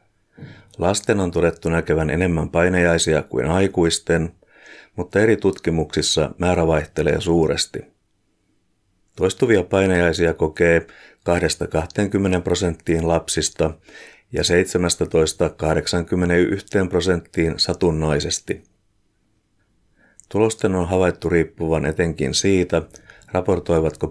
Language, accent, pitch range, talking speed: Finnish, native, 80-100 Hz, 75 wpm